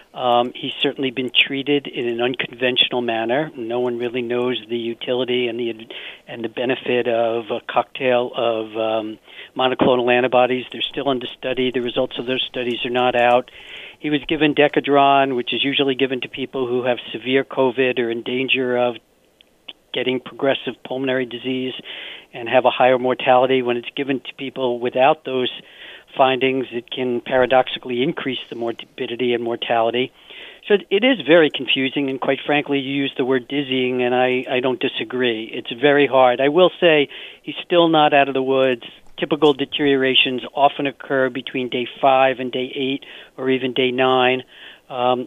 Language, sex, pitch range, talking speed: English, male, 125-140 Hz, 175 wpm